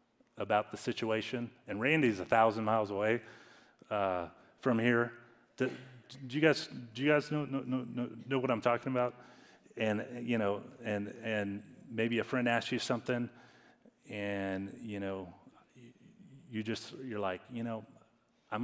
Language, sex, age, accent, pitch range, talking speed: English, male, 30-49, American, 100-120 Hz, 155 wpm